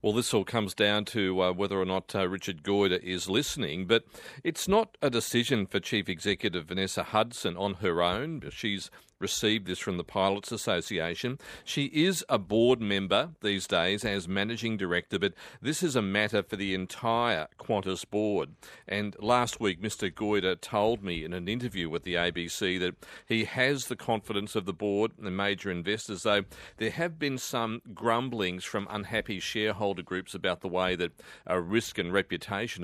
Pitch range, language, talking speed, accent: 95-115 Hz, English, 180 wpm, Australian